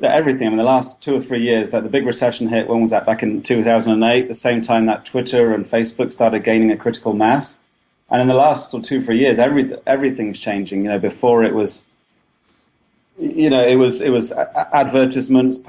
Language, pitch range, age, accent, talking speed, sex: English, 105-125 Hz, 30-49, British, 230 wpm, male